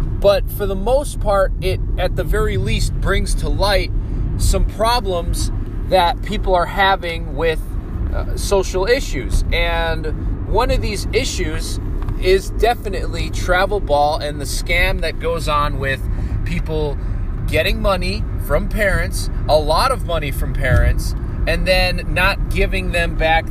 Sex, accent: male, American